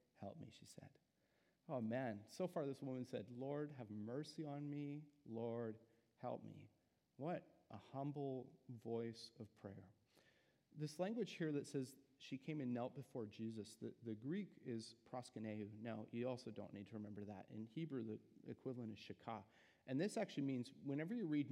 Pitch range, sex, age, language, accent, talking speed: 110-145 Hz, male, 40-59, English, American, 175 wpm